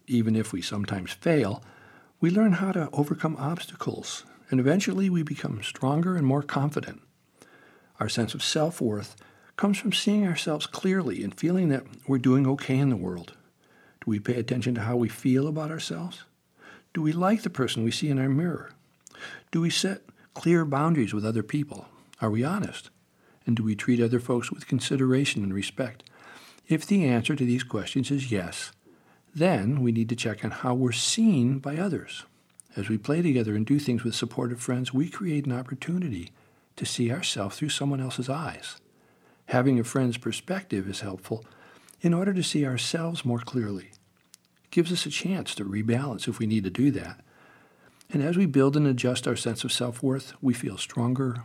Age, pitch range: 60-79, 115-155 Hz